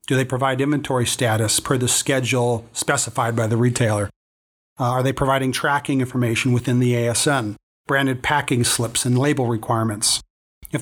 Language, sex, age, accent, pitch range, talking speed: English, male, 40-59, American, 120-150 Hz, 155 wpm